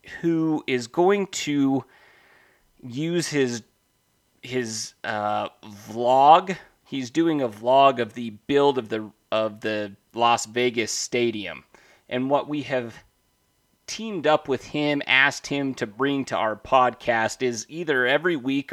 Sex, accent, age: male, American, 30-49